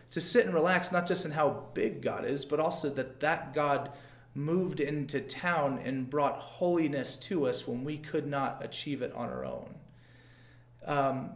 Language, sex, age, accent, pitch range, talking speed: English, male, 30-49, American, 135-185 Hz, 180 wpm